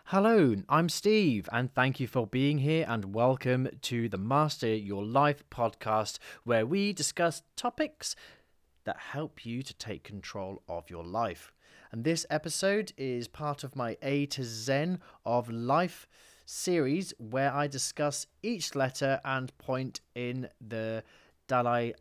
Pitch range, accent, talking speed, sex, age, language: 105-145 Hz, British, 145 wpm, male, 30-49, English